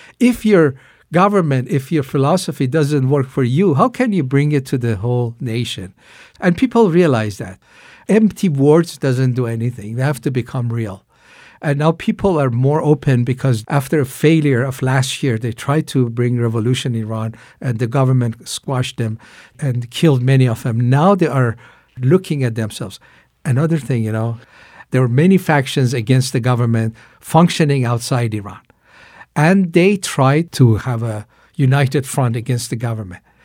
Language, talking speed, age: English, 170 wpm, 60-79